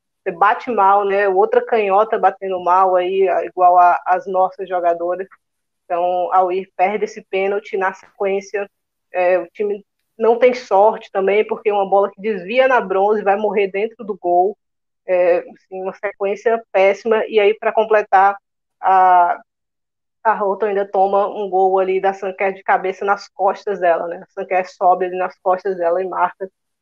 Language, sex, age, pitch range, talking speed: Portuguese, female, 20-39, 185-205 Hz, 170 wpm